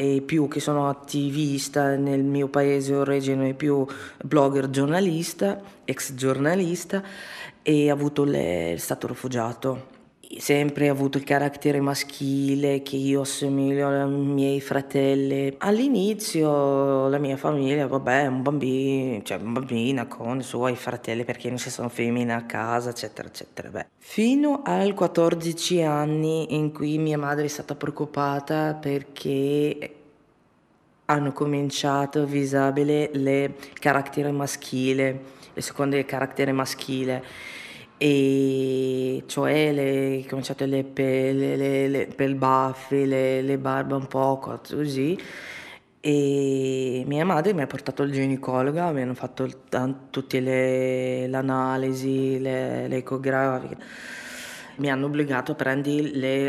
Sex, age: female, 20-39